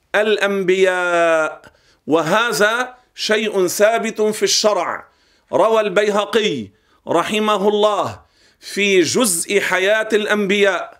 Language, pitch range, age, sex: Arabic, 195-225 Hz, 50-69, male